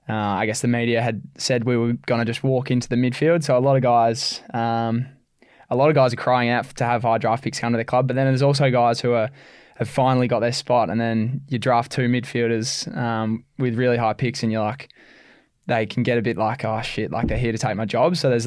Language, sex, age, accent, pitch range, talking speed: English, male, 10-29, Australian, 110-130 Hz, 265 wpm